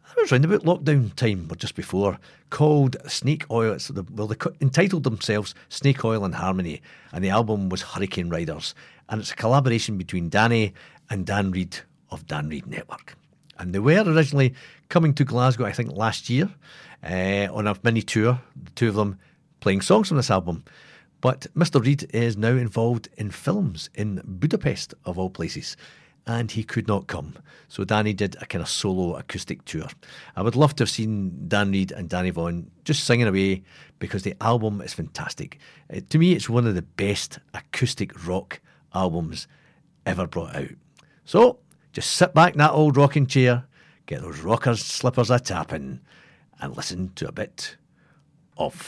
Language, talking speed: English, 180 wpm